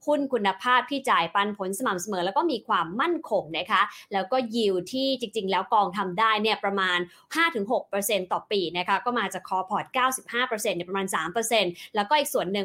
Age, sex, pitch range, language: 20-39, female, 195-250 Hz, English